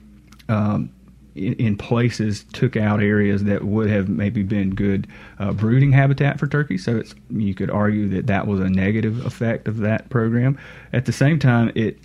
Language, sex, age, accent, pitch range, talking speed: English, male, 30-49, American, 100-115 Hz, 185 wpm